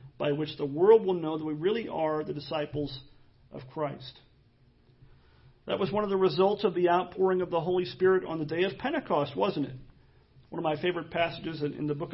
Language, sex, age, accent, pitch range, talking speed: English, male, 40-59, American, 150-210 Hz, 215 wpm